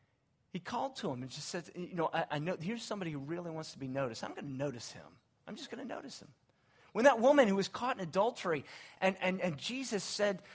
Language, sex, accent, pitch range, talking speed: English, male, American, 135-195 Hz, 250 wpm